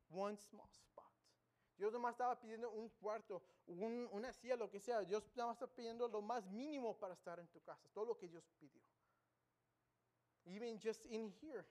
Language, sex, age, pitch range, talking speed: English, male, 20-39, 180-225 Hz, 150 wpm